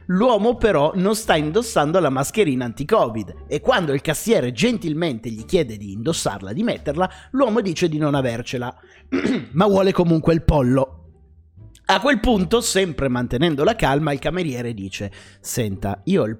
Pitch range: 130-200 Hz